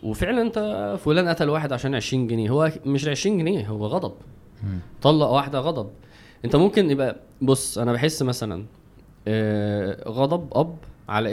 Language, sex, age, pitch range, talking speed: Arabic, male, 20-39, 115-155 Hz, 145 wpm